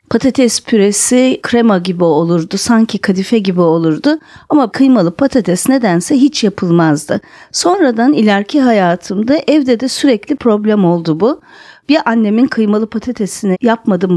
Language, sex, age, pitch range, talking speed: Turkish, female, 50-69, 195-275 Hz, 125 wpm